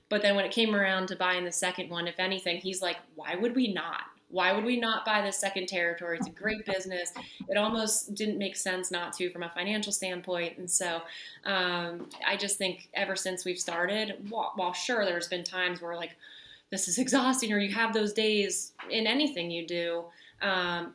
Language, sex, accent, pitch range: English, female, American, 170-195 Hz